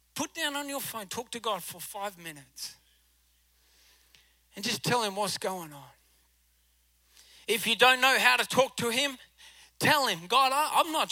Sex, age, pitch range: male, 30-49, 165-225 Hz